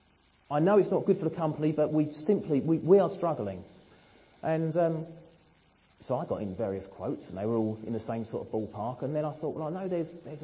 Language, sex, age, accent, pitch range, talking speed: English, male, 30-49, British, 95-155 Hz, 240 wpm